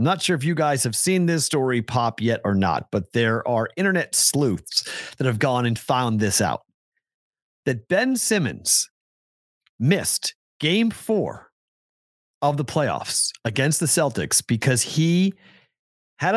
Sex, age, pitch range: male, 40-59, 130-195 Hz